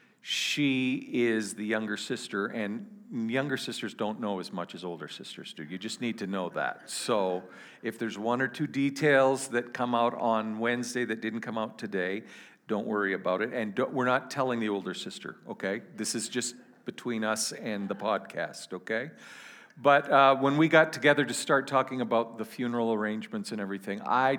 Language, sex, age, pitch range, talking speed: English, male, 50-69, 110-135 Hz, 185 wpm